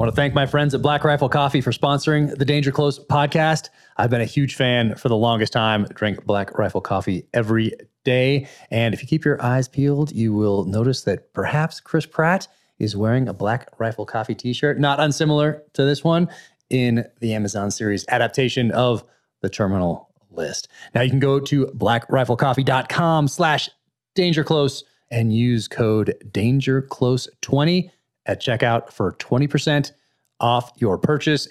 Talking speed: 165 wpm